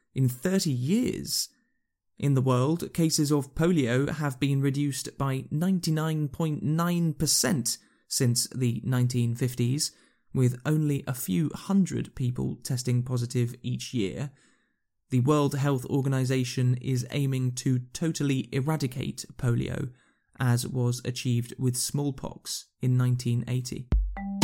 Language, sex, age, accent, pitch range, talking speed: English, male, 20-39, British, 125-145 Hz, 110 wpm